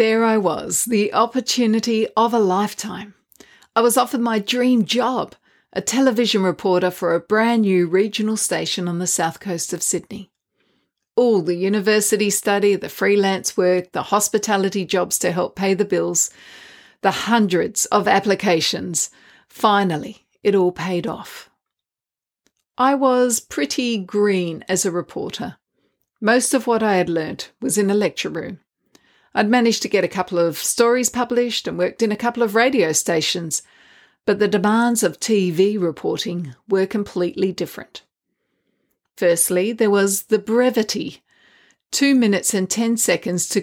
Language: English